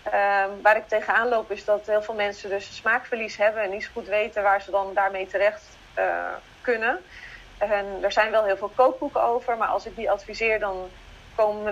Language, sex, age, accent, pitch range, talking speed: Dutch, female, 30-49, Dutch, 195-240 Hz, 210 wpm